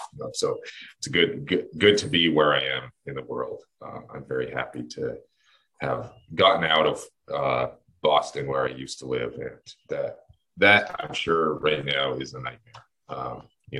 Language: English